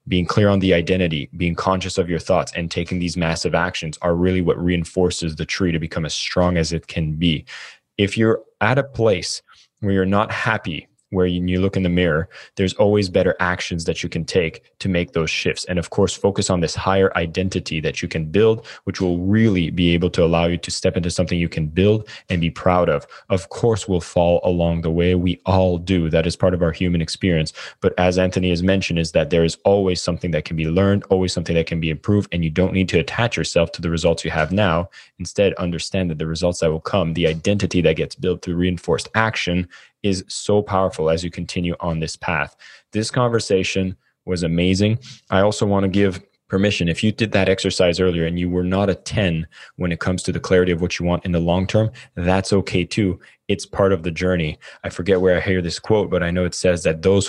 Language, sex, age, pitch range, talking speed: English, male, 20-39, 85-95 Hz, 230 wpm